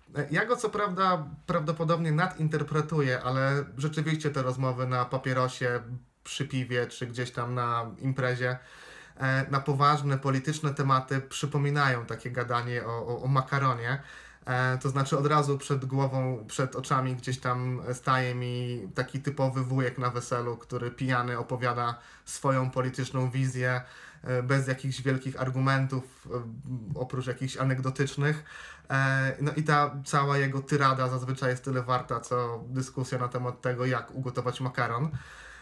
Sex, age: male, 20-39